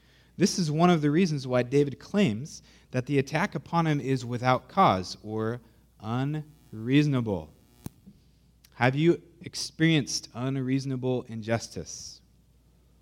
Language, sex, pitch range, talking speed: English, male, 100-135 Hz, 110 wpm